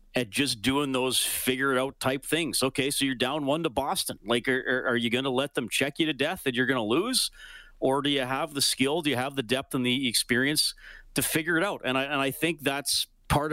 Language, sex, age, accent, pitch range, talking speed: English, male, 40-59, American, 120-150 Hz, 255 wpm